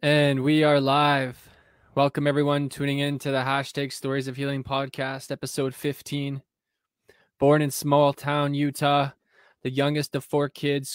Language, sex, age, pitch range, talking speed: English, male, 20-39, 130-145 Hz, 150 wpm